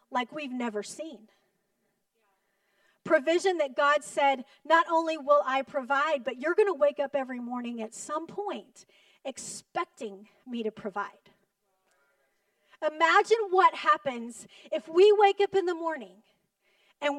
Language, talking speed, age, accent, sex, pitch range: English, 135 wpm, 30-49, American, female, 205-325 Hz